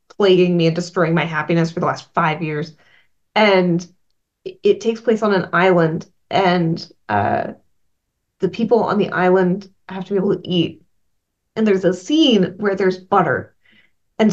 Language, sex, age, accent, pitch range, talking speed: English, female, 20-39, American, 180-220 Hz, 165 wpm